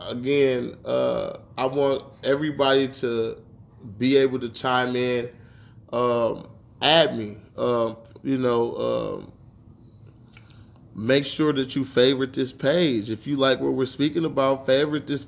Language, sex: English, male